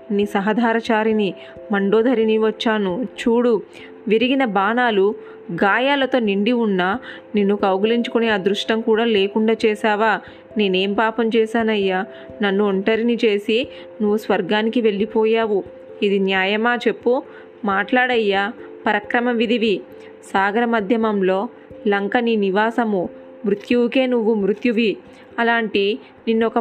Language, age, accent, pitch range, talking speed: Telugu, 20-39, native, 200-235 Hz, 90 wpm